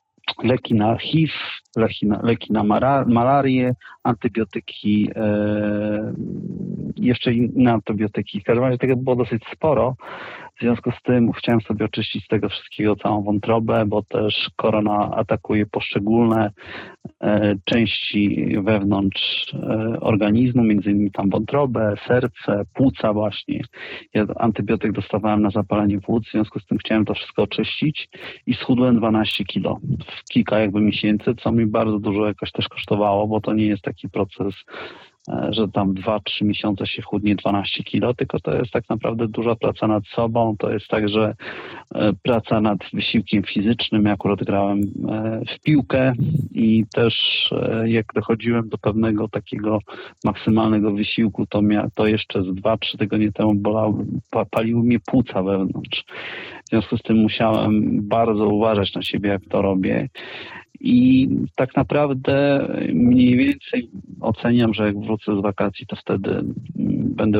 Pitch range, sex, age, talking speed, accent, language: 105-120 Hz, male, 40-59, 145 wpm, native, Polish